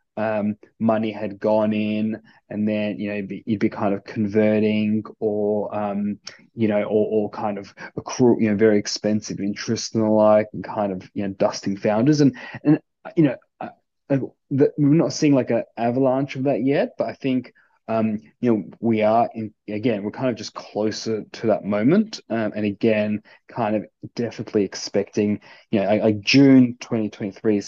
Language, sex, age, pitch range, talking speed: English, male, 20-39, 105-115 Hz, 190 wpm